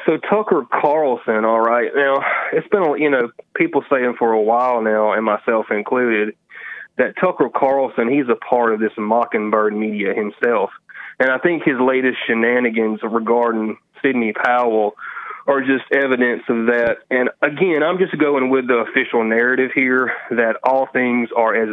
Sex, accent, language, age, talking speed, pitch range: male, American, English, 30-49, 165 wpm, 120-150 Hz